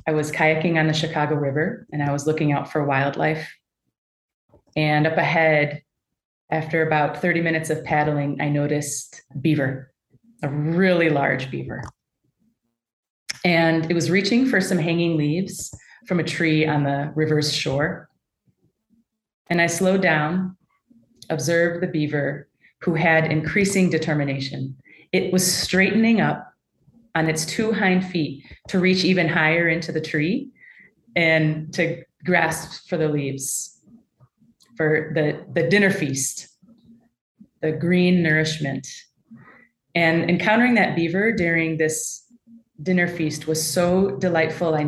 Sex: female